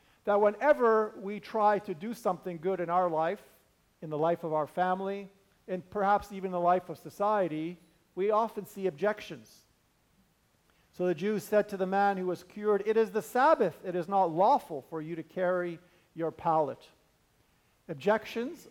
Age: 50-69